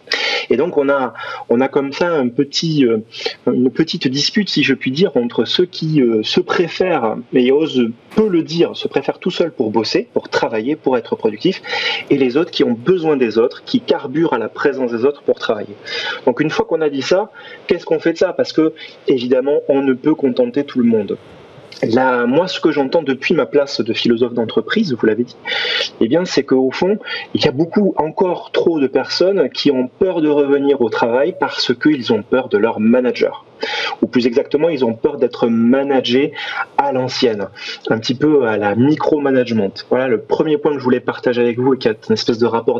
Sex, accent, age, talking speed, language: male, French, 30-49, 205 wpm, French